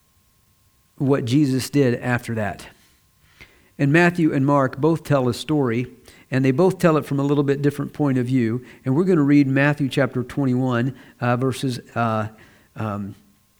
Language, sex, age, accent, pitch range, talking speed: English, male, 50-69, American, 120-145 Hz, 170 wpm